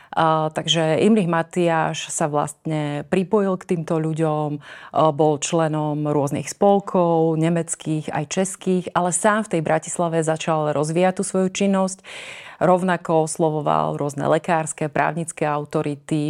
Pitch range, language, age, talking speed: 150-165 Hz, Slovak, 30-49, 125 wpm